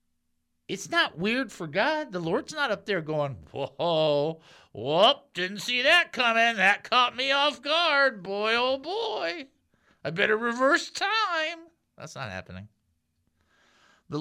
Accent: American